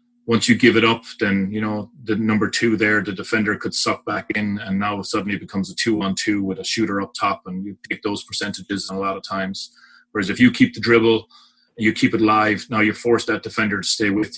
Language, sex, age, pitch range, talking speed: English, male, 30-49, 105-120 Hz, 240 wpm